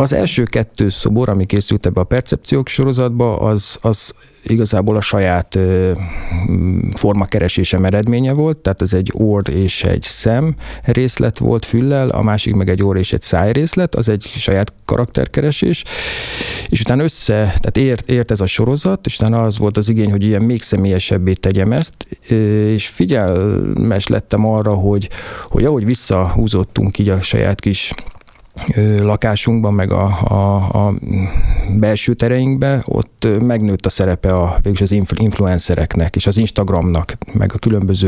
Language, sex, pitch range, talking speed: Hungarian, male, 95-115 Hz, 145 wpm